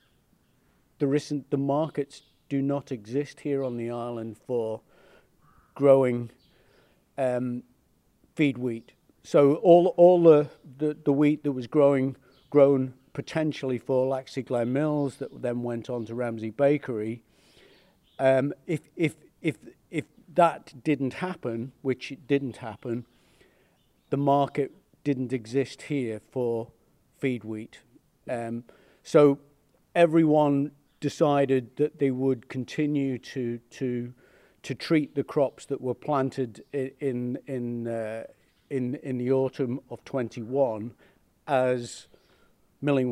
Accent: British